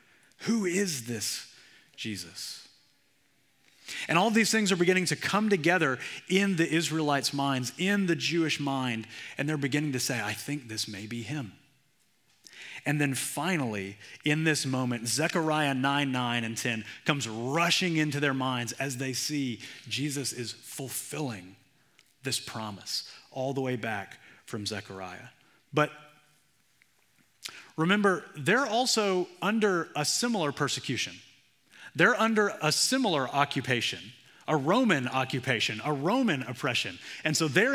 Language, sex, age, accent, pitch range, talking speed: English, male, 30-49, American, 125-195 Hz, 135 wpm